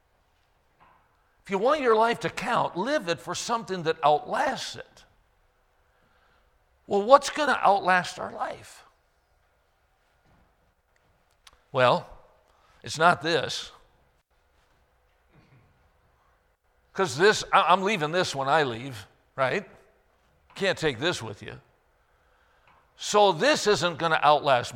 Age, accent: 60-79, American